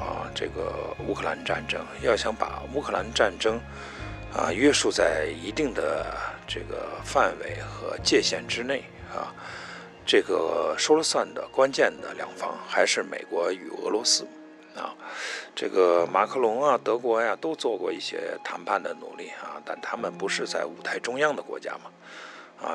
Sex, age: male, 50-69